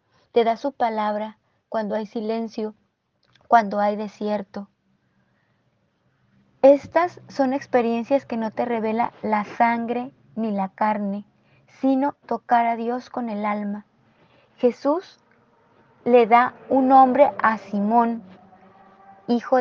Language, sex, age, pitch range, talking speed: Spanish, female, 20-39, 210-260 Hz, 115 wpm